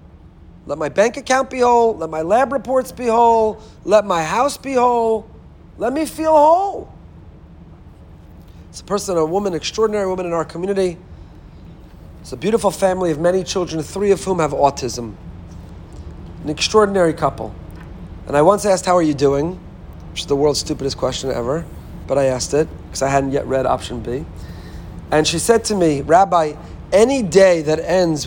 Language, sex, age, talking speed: English, male, 40-59, 175 wpm